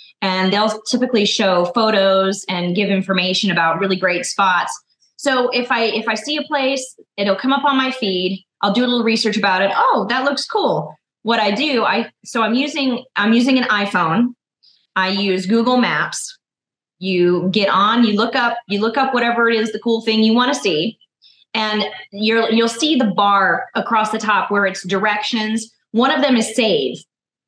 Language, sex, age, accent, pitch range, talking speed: English, female, 20-39, American, 200-245 Hz, 190 wpm